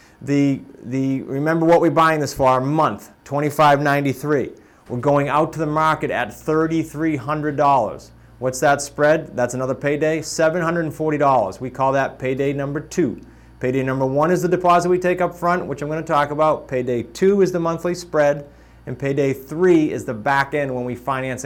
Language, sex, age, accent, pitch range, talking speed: English, male, 30-49, American, 130-160 Hz, 175 wpm